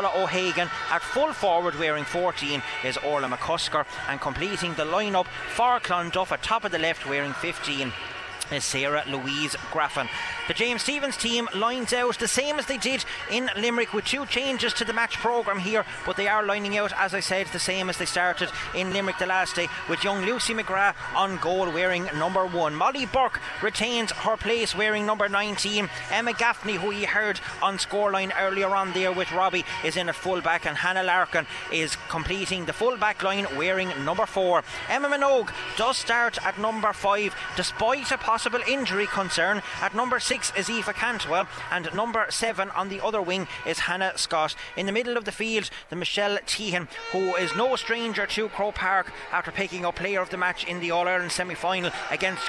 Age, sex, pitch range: 30-49, male, 180-230 Hz